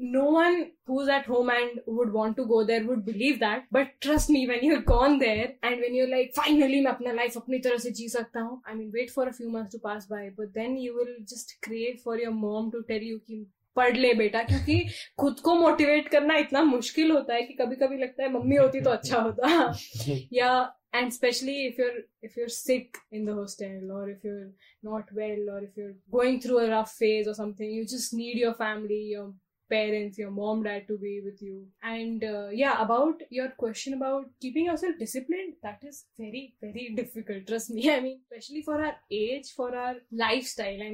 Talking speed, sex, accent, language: 200 wpm, female, Indian, English